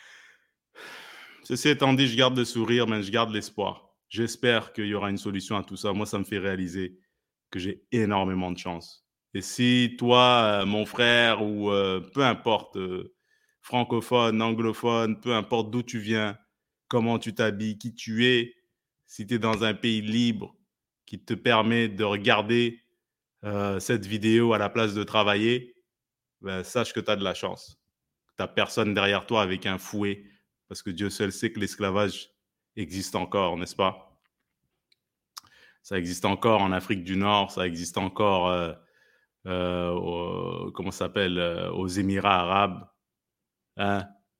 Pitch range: 95-120 Hz